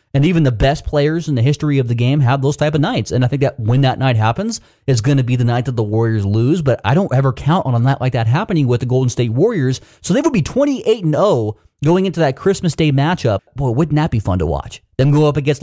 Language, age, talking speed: English, 30-49, 280 wpm